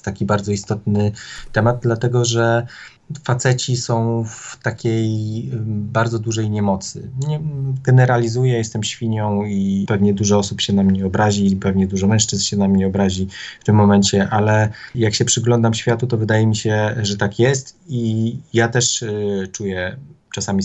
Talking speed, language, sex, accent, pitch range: 150 wpm, Polish, male, native, 105-120 Hz